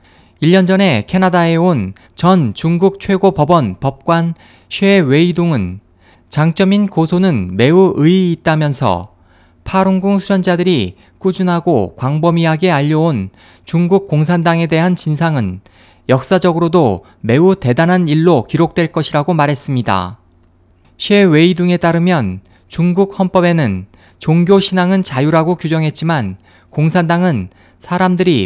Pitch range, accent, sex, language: 110-180 Hz, native, male, Korean